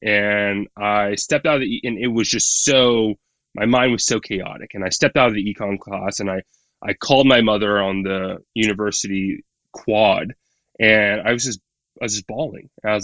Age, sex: 20-39, male